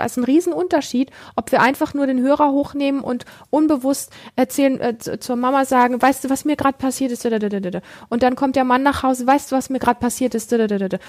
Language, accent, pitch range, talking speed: German, German, 225-260 Hz, 210 wpm